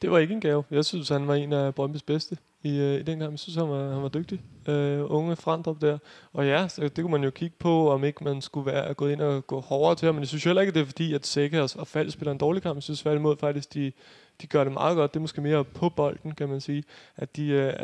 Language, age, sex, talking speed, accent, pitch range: Danish, 20-39, male, 305 wpm, native, 140-155 Hz